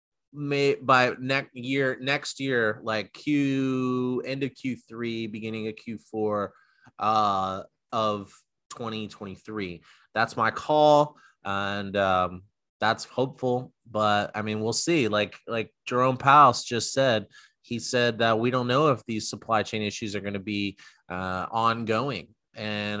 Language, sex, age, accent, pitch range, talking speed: English, male, 20-39, American, 105-130 Hz, 145 wpm